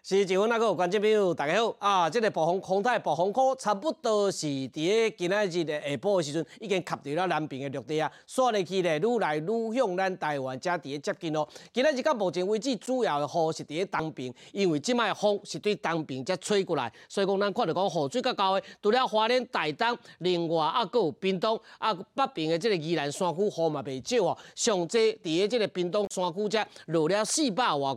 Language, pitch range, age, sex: Chinese, 160-215 Hz, 30-49, male